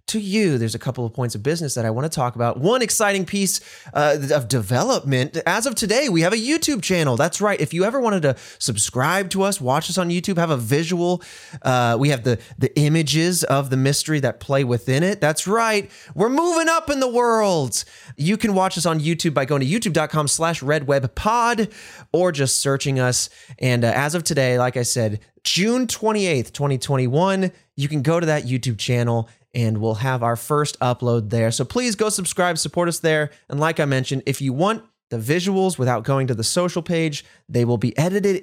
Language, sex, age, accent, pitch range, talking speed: English, male, 20-39, American, 130-185 Hz, 210 wpm